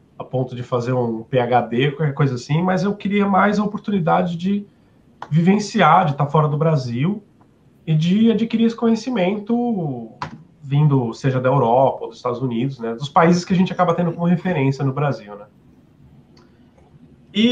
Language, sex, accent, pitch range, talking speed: Portuguese, male, Brazilian, 140-185 Hz, 170 wpm